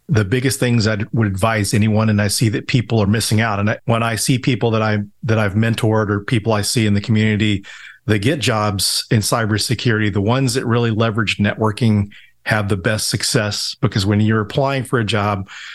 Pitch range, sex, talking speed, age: 105-120 Hz, male, 205 wpm, 40-59